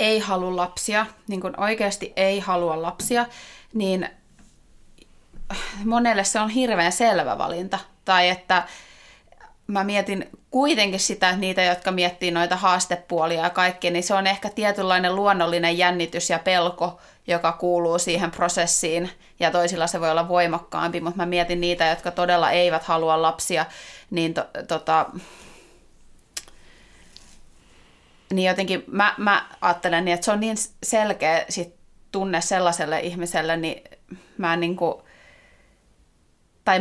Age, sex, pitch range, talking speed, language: 30-49, female, 170-195 Hz, 130 wpm, Finnish